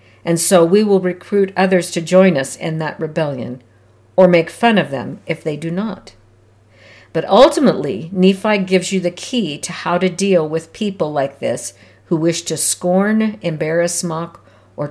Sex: female